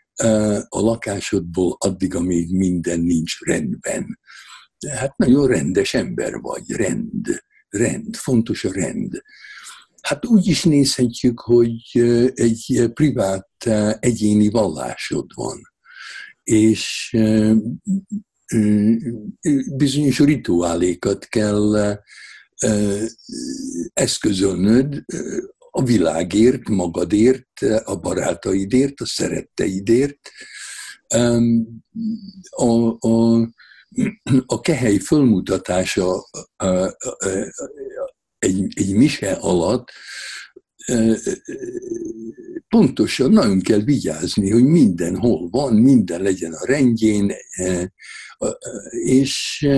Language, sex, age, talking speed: Hungarian, male, 60-79, 75 wpm